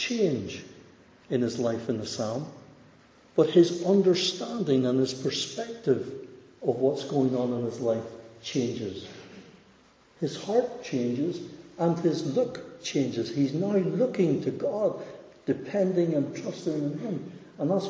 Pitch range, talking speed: 115-140 Hz, 135 wpm